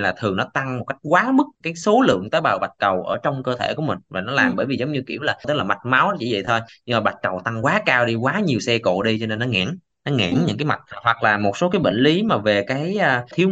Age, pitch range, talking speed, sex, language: 20-39, 115-160 Hz, 310 wpm, male, Vietnamese